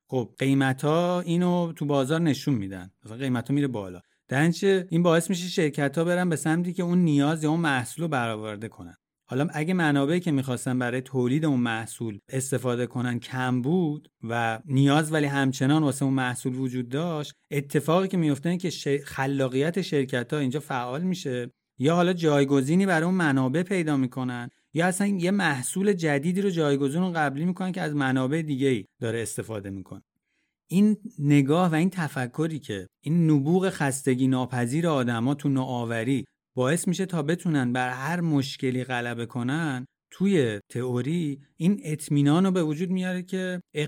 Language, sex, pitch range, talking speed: Persian, male, 125-170 Hz, 165 wpm